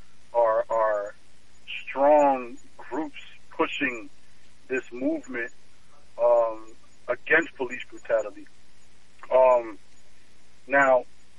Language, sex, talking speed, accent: English, male, 70 wpm, American